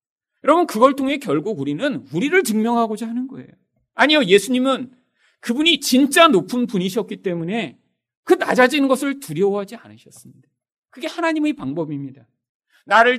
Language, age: Korean, 40-59